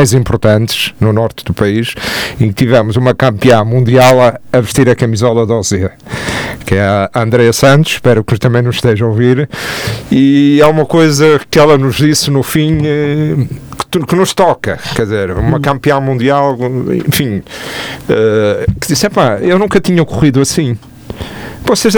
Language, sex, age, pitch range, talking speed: Portuguese, male, 50-69, 115-155 Hz, 160 wpm